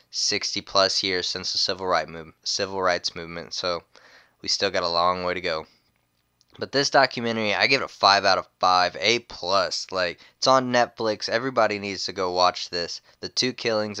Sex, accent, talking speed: male, American, 195 wpm